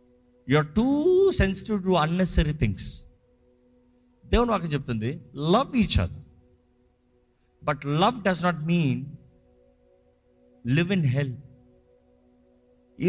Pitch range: 120-185 Hz